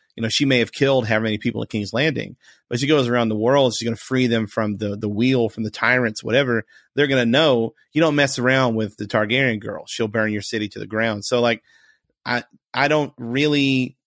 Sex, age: male, 30-49